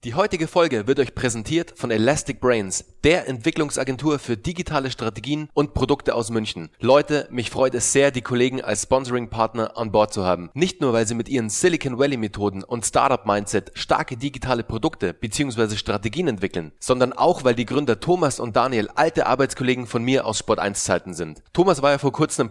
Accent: German